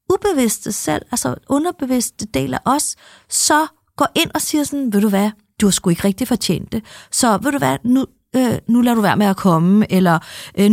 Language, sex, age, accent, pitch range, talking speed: Danish, female, 30-49, native, 195-275 Hz, 215 wpm